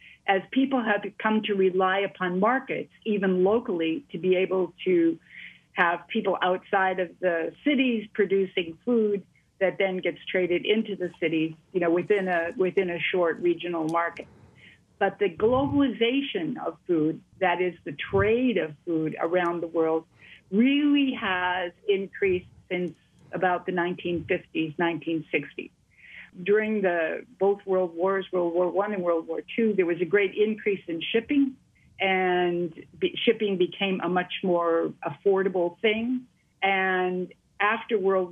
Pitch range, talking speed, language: 175-210 Hz, 140 wpm, English